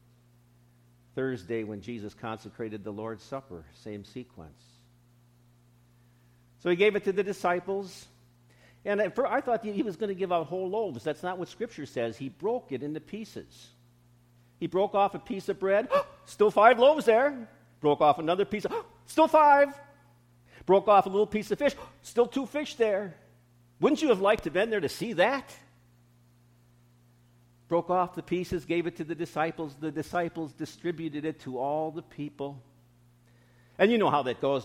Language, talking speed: English, 170 wpm